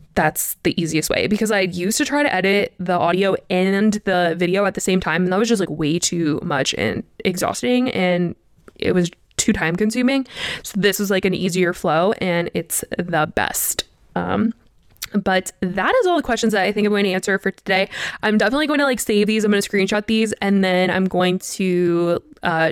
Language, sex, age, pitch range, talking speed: English, female, 20-39, 185-230 Hz, 210 wpm